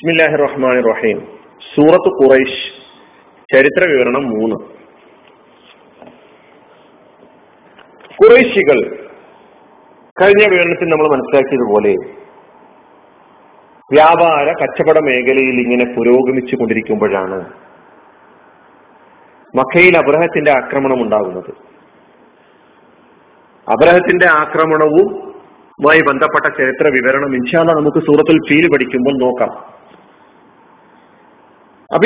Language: Malayalam